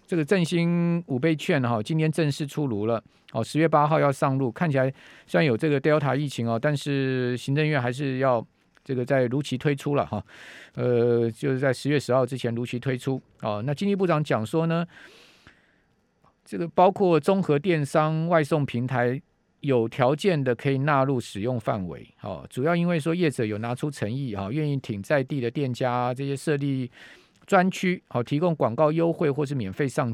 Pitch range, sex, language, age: 125-160 Hz, male, Chinese, 50-69